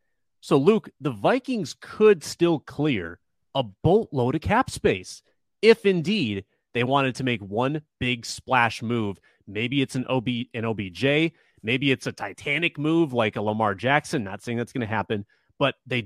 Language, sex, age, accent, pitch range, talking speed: English, male, 30-49, American, 115-175 Hz, 170 wpm